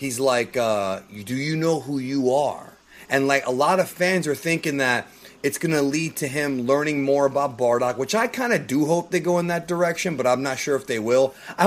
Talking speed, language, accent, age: 235 wpm, English, American, 30-49